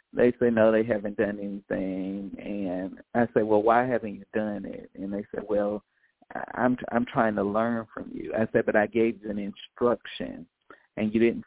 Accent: American